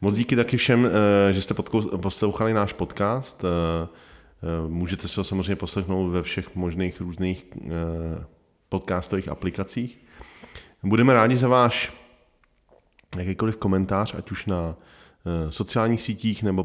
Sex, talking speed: male, 115 wpm